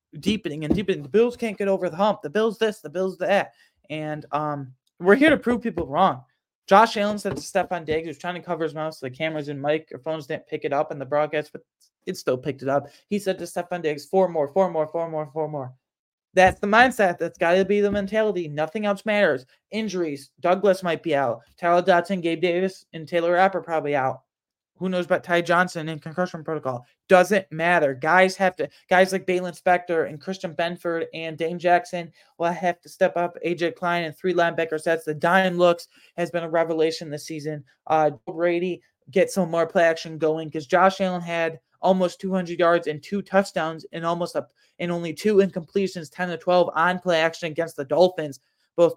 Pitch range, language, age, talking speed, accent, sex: 155-185 Hz, English, 20-39, 210 wpm, American, male